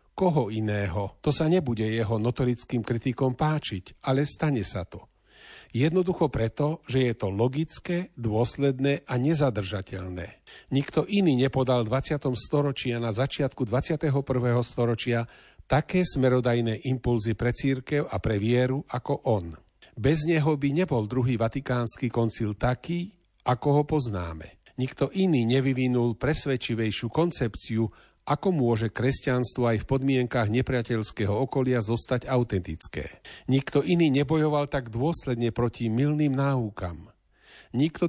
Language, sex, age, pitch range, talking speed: Slovak, male, 40-59, 115-145 Hz, 120 wpm